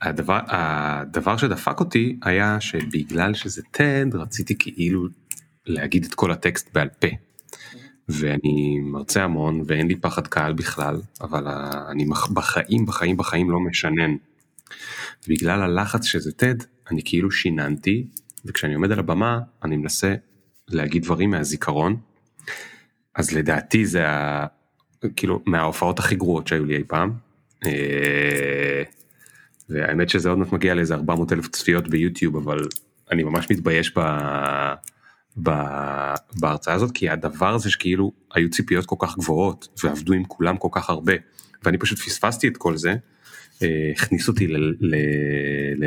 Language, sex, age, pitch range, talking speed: Hebrew, male, 30-49, 75-95 Hz, 135 wpm